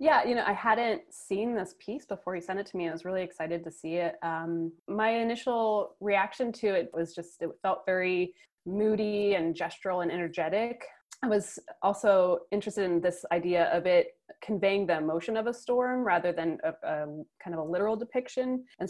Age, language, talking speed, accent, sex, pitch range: 20-39, English, 195 wpm, American, female, 170-195 Hz